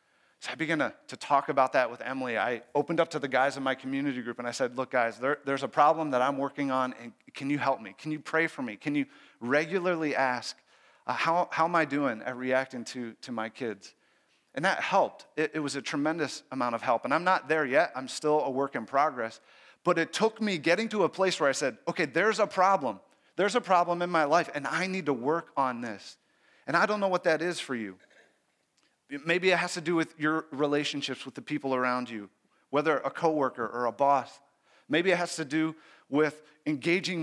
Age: 30-49